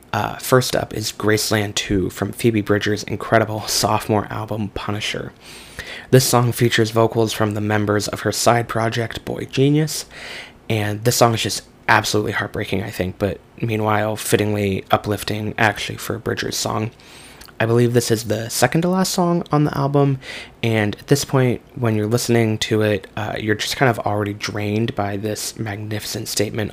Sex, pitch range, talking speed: male, 105-115 Hz, 170 wpm